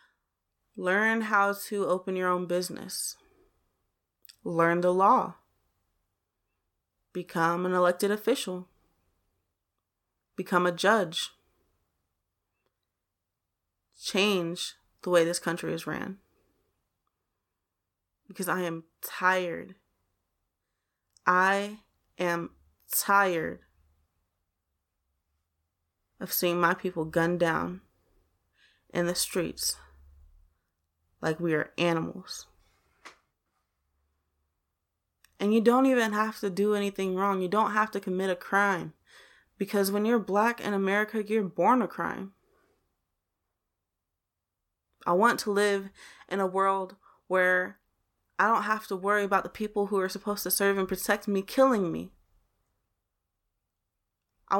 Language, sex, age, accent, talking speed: English, female, 20-39, American, 105 wpm